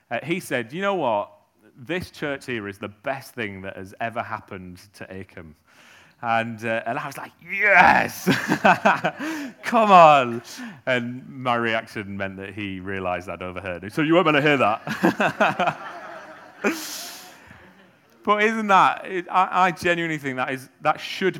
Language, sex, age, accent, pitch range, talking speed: English, male, 30-49, British, 110-150 Hz, 155 wpm